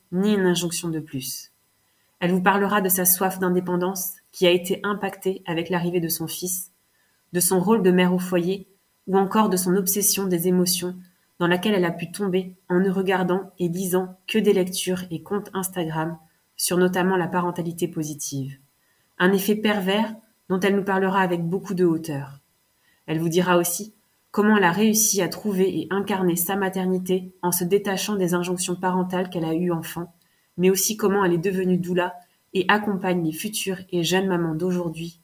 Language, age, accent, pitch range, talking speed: French, 20-39, French, 170-195 Hz, 180 wpm